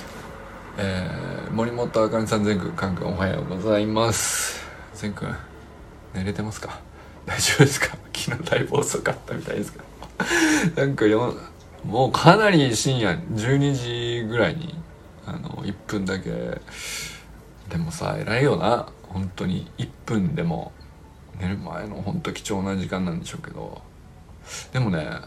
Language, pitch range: Japanese, 90-140 Hz